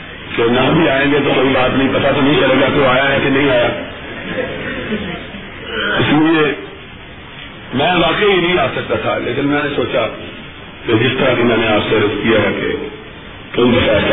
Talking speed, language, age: 185 wpm, Urdu, 50-69